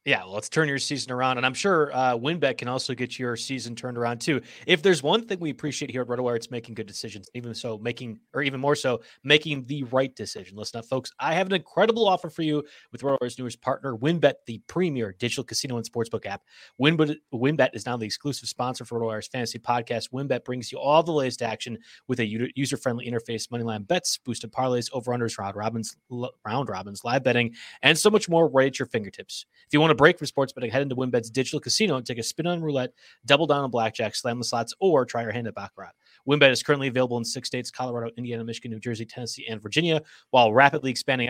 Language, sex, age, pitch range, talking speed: English, male, 30-49, 120-145 Hz, 225 wpm